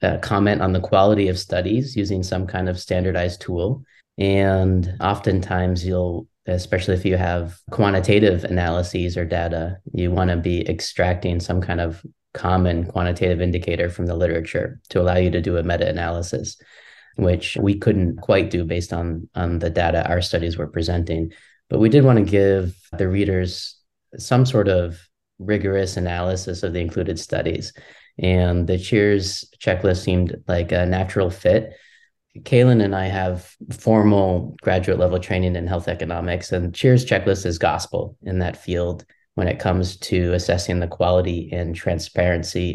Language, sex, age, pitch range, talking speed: English, male, 20-39, 85-95 Hz, 155 wpm